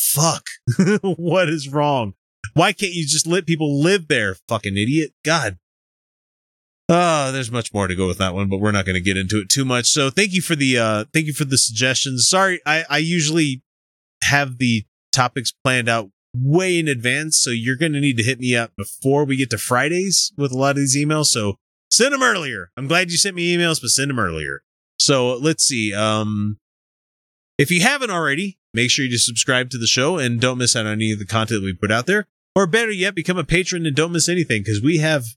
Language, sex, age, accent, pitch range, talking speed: English, male, 30-49, American, 105-155 Hz, 225 wpm